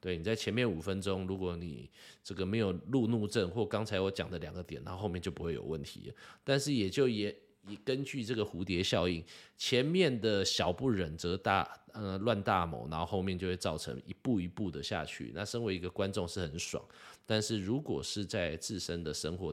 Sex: male